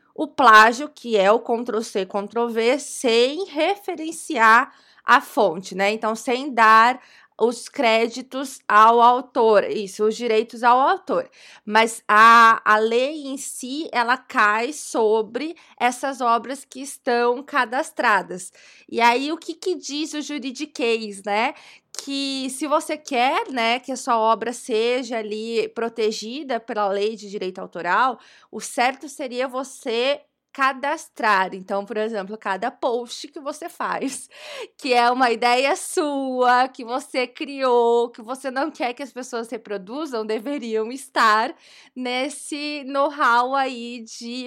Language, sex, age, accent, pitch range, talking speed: Portuguese, female, 20-39, Brazilian, 225-275 Hz, 135 wpm